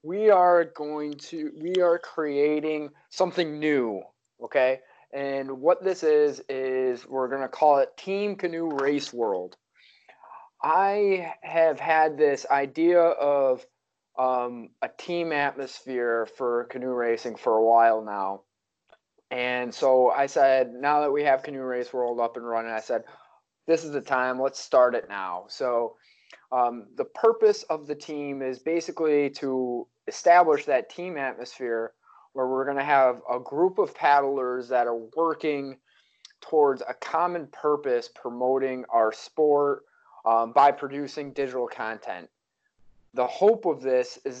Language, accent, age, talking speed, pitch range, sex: English, American, 20-39, 145 wpm, 125-160 Hz, male